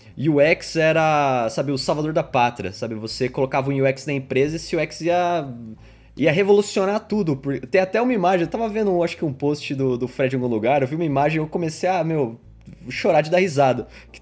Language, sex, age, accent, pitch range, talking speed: Portuguese, male, 20-39, Brazilian, 130-175 Hz, 220 wpm